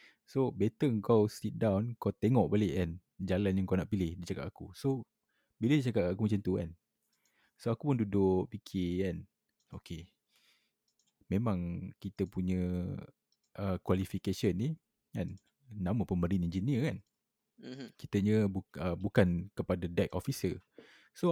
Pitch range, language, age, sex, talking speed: 95-110 Hz, Malay, 20-39, male, 145 wpm